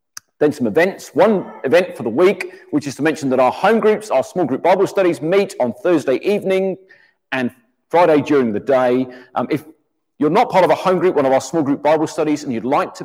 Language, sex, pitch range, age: English, male, 125-180 Hz, 40-59